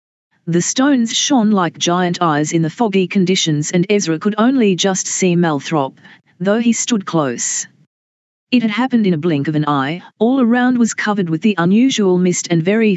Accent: Australian